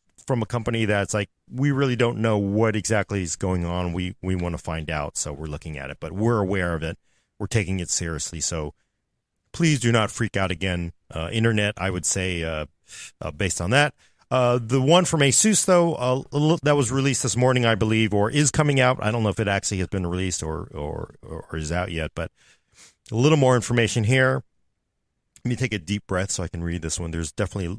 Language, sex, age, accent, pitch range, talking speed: English, male, 40-59, American, 90-130 Hz, 230 wpm